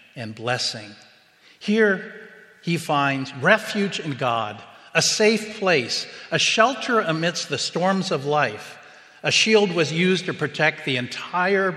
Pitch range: 130-180 Hz